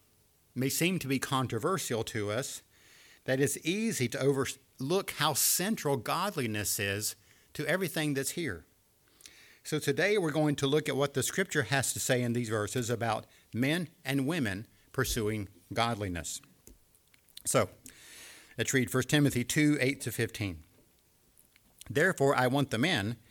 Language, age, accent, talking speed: English, 50-69, American, 140 wpm